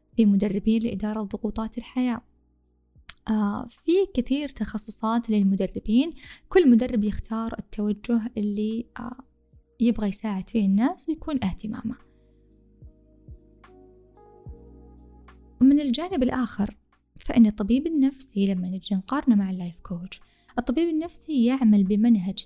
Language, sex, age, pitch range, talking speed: Arabic, female, 10-29, 205-255 Hz, 100 wpm